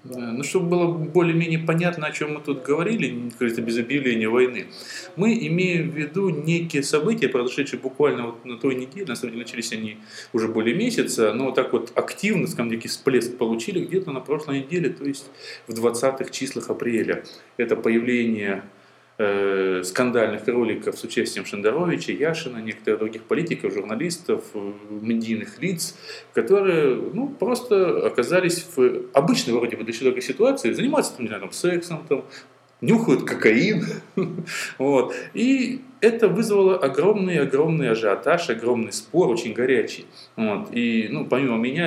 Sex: male